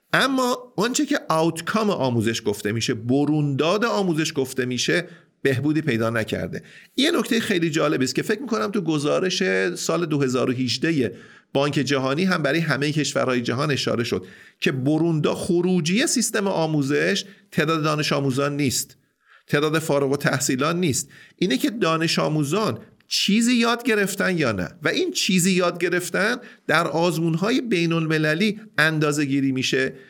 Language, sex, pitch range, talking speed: Persian, male, 140-195 Hz, 140 wpm